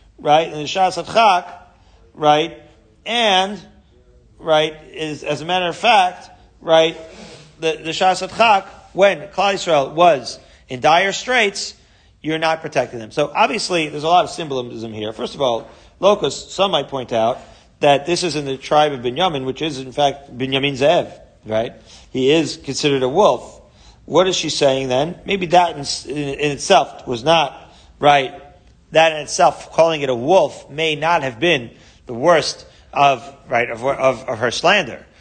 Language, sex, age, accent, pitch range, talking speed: English, male, 40-59, American, 135-170 Hz, 170 wpm